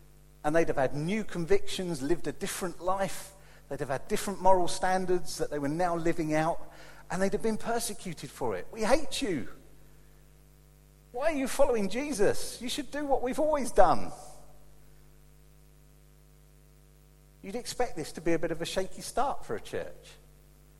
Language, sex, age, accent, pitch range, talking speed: English, male, 40-59, British, 150-215 Hz, 165 wpm